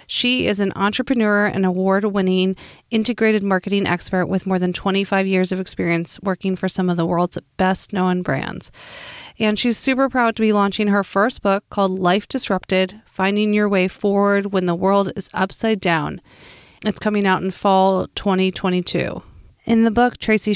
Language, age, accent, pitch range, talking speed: English, 30-49, American, 185-215 Hz, 165 wpm